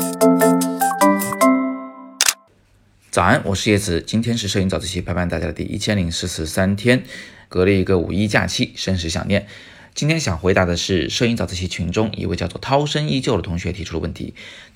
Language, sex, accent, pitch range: Chinese, male, native, 90-115 Hz